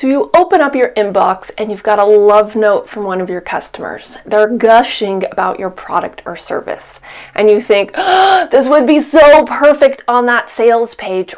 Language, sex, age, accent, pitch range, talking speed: English, female, 30-49, American, 205-295 Hz, 190 wpm